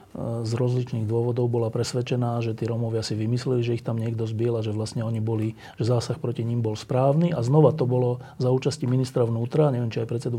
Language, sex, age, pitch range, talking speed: Slovak, male, 40-59, 120-135 Hz, 220 wpm